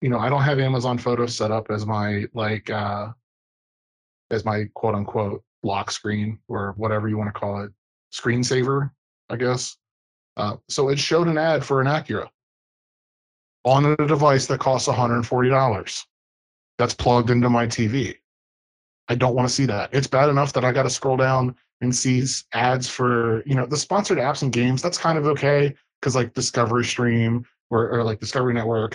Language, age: English, 30-49